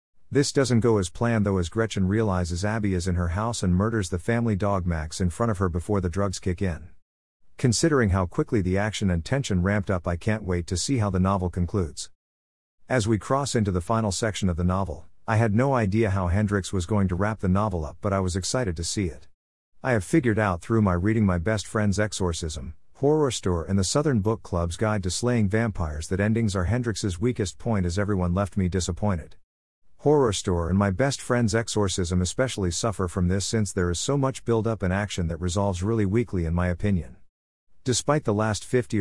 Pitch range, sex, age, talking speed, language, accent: 90-115 Hz, male, 50-69, 215 wpm, English, American